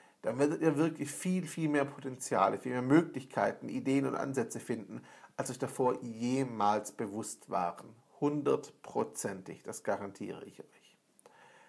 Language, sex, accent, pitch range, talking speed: German, male, German, 120-150 Hz, 135 wpm